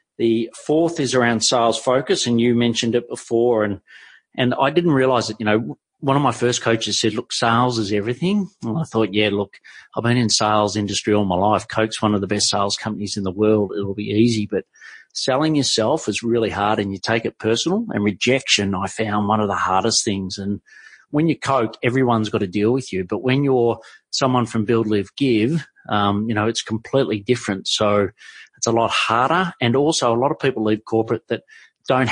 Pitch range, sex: 105-130 Hz, male